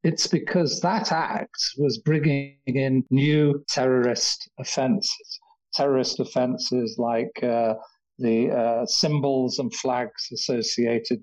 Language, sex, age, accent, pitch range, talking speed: English, male, 50-69, British, 125-195 Hz, 105 wpm